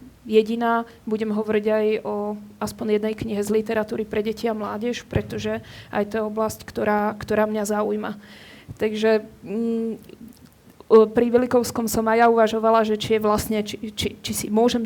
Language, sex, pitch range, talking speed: Slovak, female, 215-230 Hz, 160 wpm